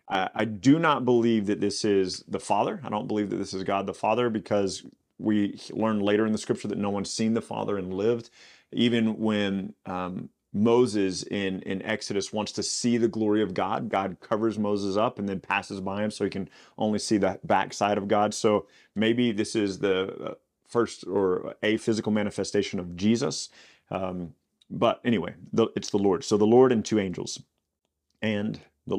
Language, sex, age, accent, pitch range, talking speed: English, male, 30-49, American, 100-110 Hz, 190 wpm